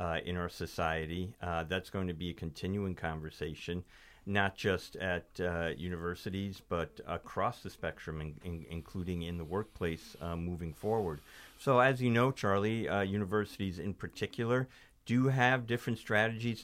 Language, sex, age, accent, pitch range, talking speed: English, male, 50-69, American, 85-110 Hz, 150 wpm